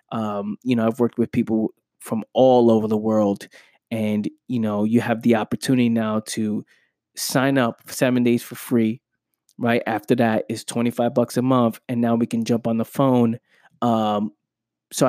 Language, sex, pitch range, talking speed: English, male, 115-125 Hz, 180 wpm